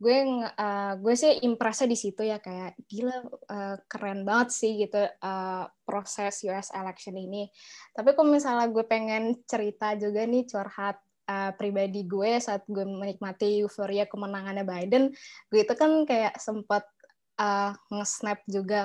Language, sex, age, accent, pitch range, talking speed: Indonesian, female, 10-29, native, 195-225 Hz, 145 wpm